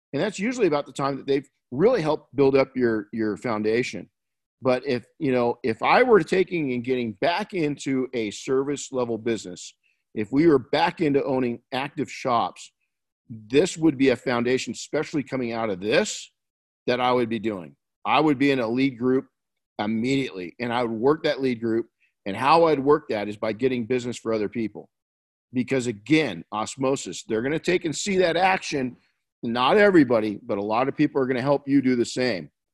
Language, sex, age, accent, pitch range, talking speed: English, male, 50-69, American, 115-140 Hz, 195 wpm